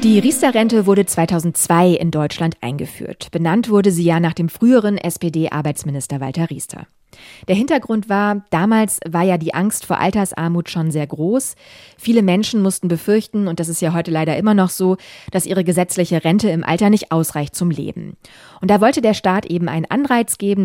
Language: German